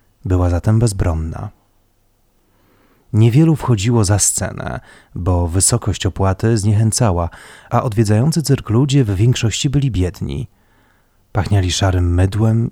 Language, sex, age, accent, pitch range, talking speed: Polish, male, 30-49, native, 90-110 Hz, 105 wpm